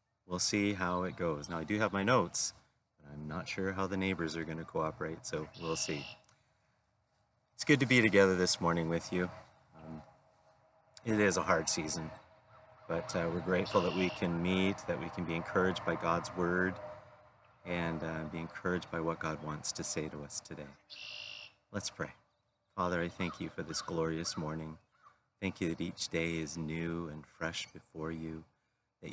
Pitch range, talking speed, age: 80-105 Hz, 185 wpm, 30-49